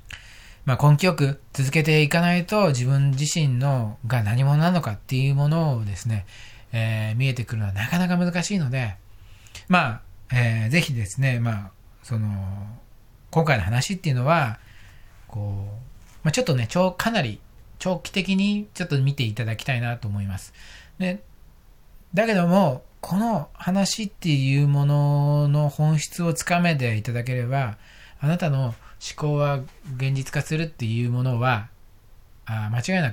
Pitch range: 110-155 Hz